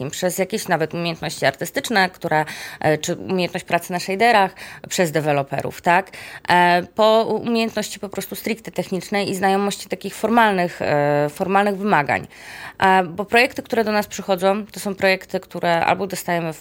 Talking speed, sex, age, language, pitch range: 135 wpm, female, 20-39, Polish, 155-200 Hz